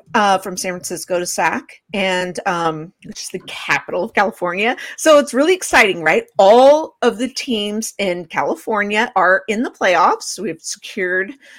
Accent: American